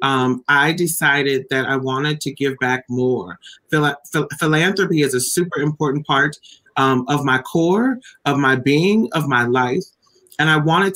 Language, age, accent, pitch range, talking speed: English, 30-49, American, 140-170 Hz, 160 wpm